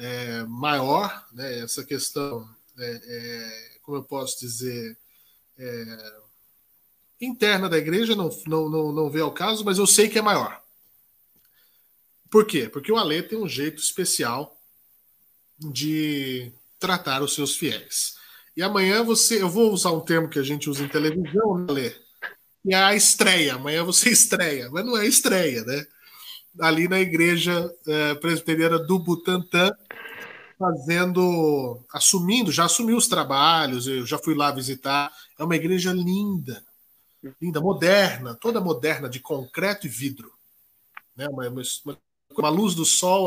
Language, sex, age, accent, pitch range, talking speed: Portuguese, male, 20-39, Brazilian, 140-185 Hz, 145 wpm